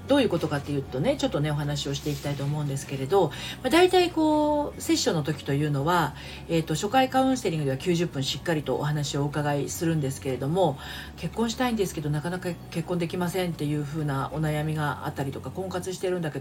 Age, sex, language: 40-59, female, Japanese